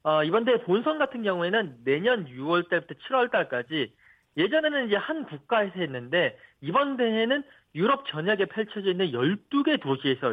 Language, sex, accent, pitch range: Korean, male, native, 155-235 Hz